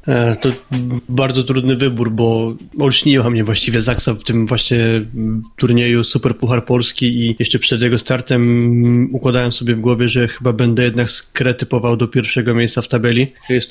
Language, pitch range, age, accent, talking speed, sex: Polish, 120-130 Hz, 20-39, native, 160 wpm, male